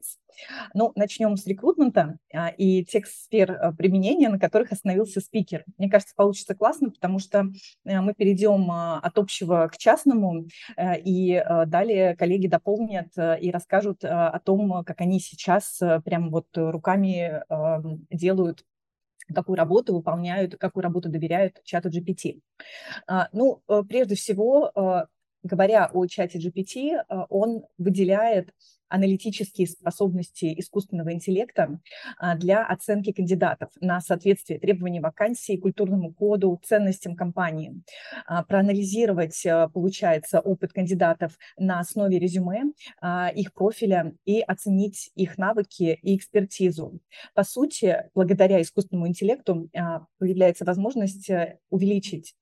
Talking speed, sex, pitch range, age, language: 110 wpm, female, 175-205 Hz, 20-39, Russian